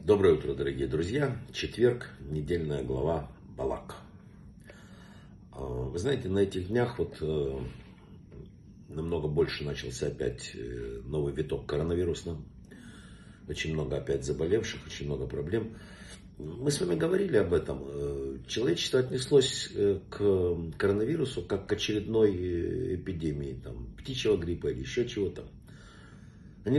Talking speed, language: 110 wpm, Russian